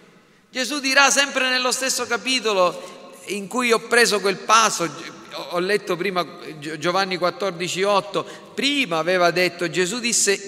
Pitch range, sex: 160-230 Hz, male